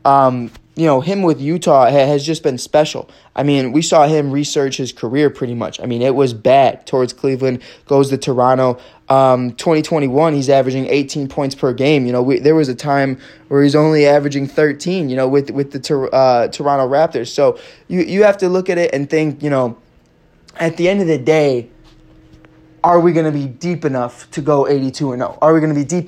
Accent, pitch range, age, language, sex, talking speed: American, 135-150 Hz, 20-39, English, male, 210 wpm